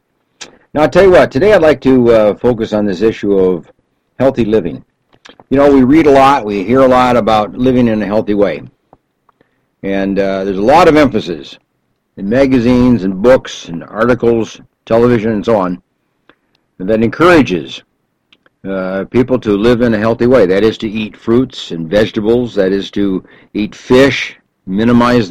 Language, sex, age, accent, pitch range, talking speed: English, male, 60-79, American, 100-130 Hz, 175 wpm